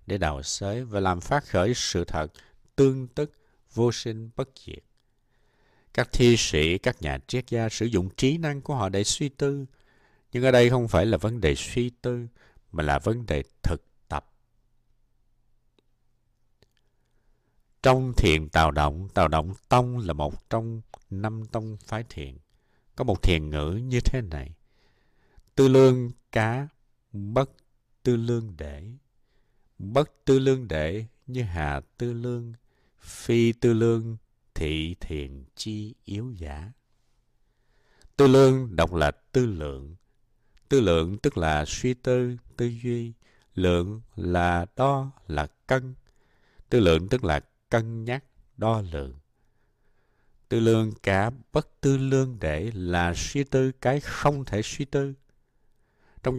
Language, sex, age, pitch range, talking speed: Vietnamese, male, 60-79, 85-125 Hz, 145 wpm